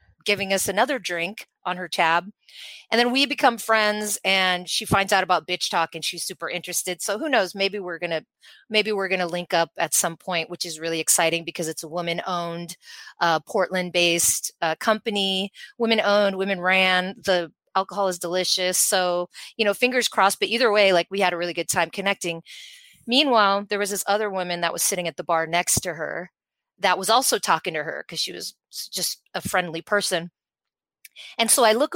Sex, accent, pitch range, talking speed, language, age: female, American, 175-215 Hz, 195 wpm, English, 30-49